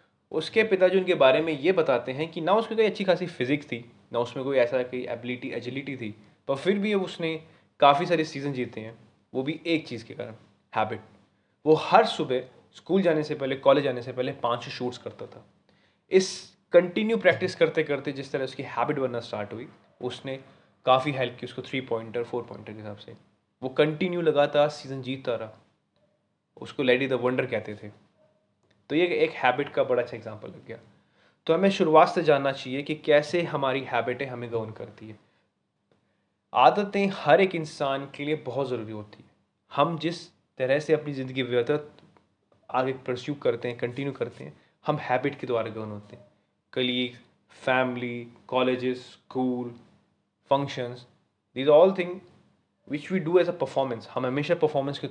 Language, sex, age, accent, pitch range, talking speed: Hindi, male, 20-39, native, 120-155 Hz, 180 wpm